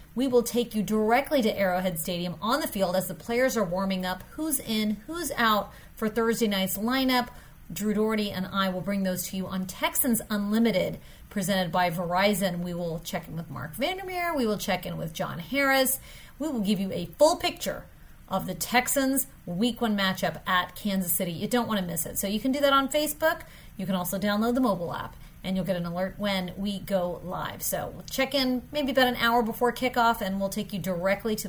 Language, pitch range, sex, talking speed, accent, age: English, 185-245 Hz, female, 220 wpm, American, 30-49